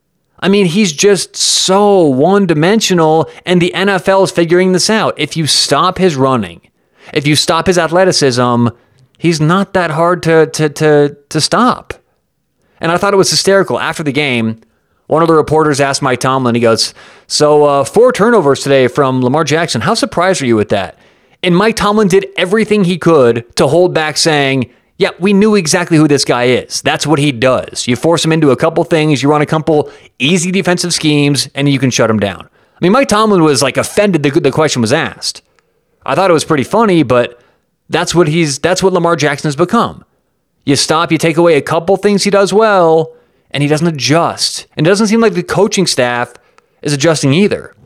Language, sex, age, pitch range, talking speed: English, male, 30-49, 145-185 Hz, 200 wpm